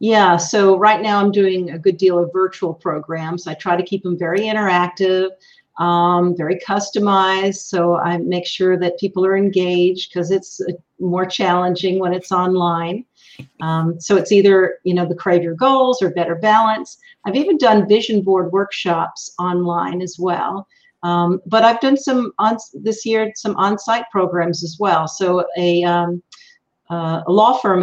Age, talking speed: 50-69, 170 wpm